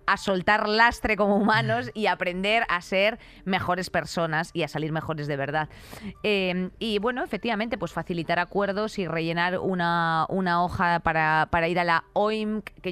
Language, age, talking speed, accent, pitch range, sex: Spanish, 20-39, 165 wpm, Spanish, 160-205 Hz, female